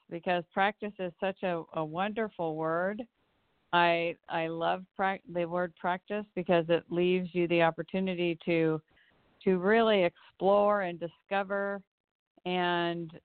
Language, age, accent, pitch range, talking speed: English, 50-69, American, 170-195 Hz, 125 wpm